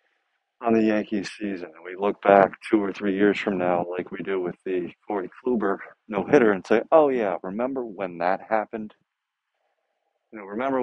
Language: English